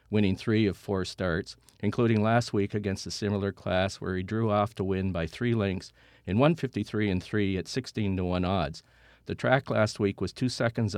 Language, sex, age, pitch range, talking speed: English, male, 50-69, 95-120 Hz, 200 wpm